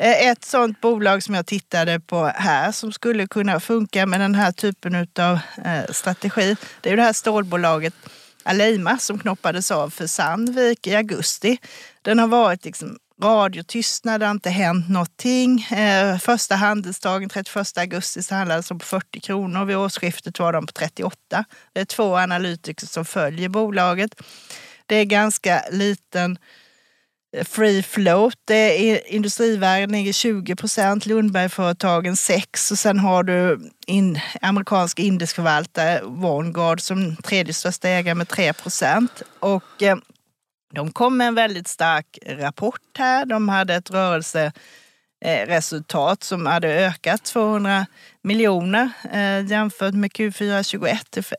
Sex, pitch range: female, 175-215 Hz